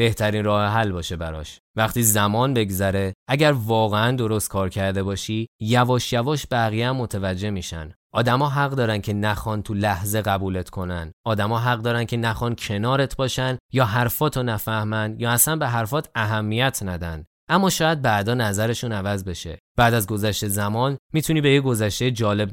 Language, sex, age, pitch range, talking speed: Persian, male, 20-39, 100-125 Hz, 160 wpm